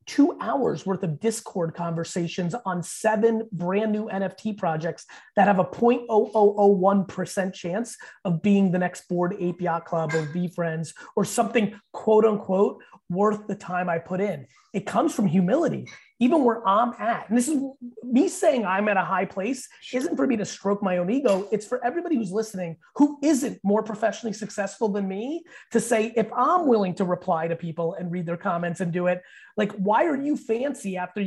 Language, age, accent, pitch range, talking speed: English, 30-49, American, 190-245 Hz, 185 wpm